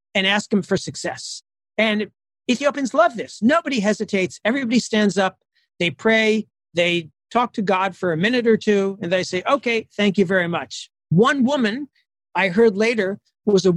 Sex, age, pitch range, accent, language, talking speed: male, 50-69, 175-225 Hz, American, English, 170 wpm